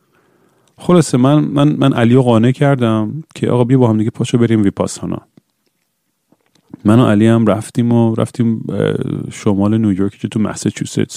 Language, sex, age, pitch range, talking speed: Persian, male, 40-59, 100-120 Hz, 150 wpm